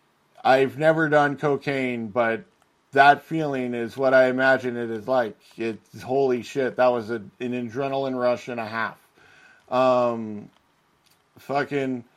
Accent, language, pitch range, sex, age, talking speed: American, English, 115-140 Hz, male, 40-59, 135 wpm